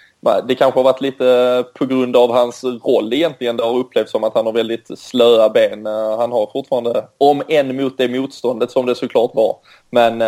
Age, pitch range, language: 20-39, 115-130 Hz, Swedish